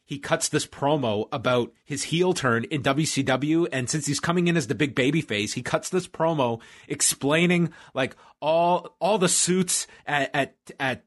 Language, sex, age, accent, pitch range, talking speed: English, male, 30-49, American, 125-160 Hz, 180 wpm